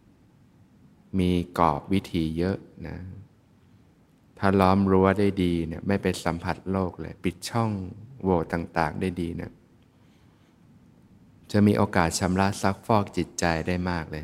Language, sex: Thai, male